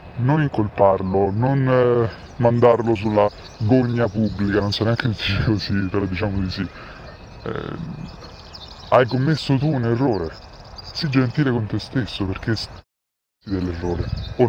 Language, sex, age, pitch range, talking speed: Italian, female, 20-39, 95-120 Hz, 135 wpm